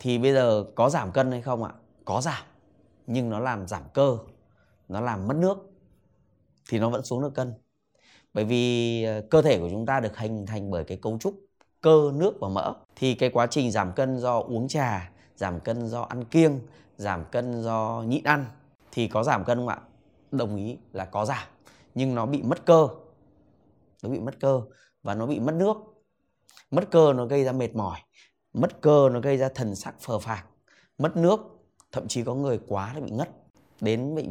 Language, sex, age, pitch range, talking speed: Vietnamese, male, 20-39, 105-135 Hz, 205 wpm